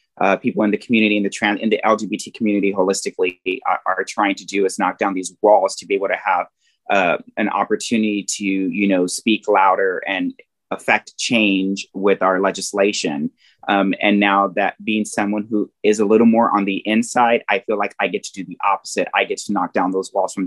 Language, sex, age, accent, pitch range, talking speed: English, male, 30-49, American, 100-115 Hz, 215 wpm